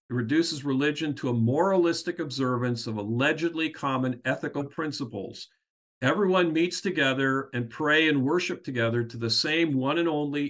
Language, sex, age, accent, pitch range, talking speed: English, male, 50-69, American, 115-155 Hz, 150 wpm